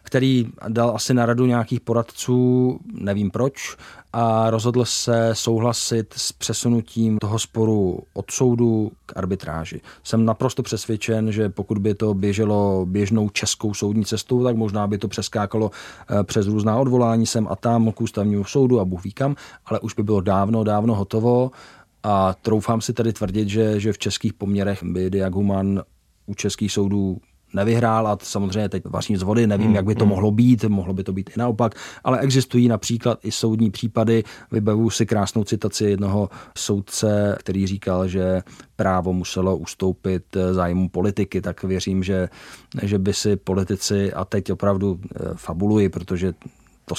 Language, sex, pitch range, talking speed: Czech, male, 95-115 Hz, 155 wpm